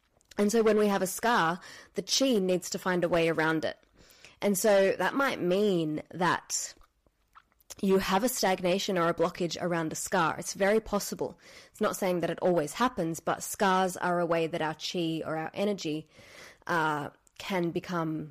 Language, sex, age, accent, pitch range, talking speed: English, female, 20-39, Australian, 170-210 Hz, 185 wpm